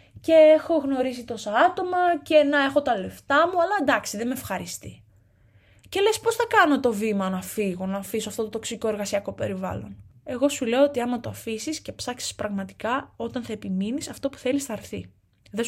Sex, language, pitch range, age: female, Greek, 190-280 Hz, 20-39